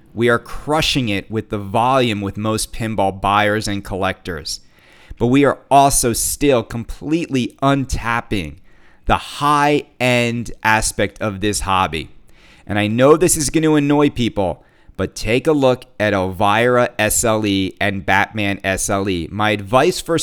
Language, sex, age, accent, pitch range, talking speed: English, male, 30-49, American, 100-135 Hz, 140 wpm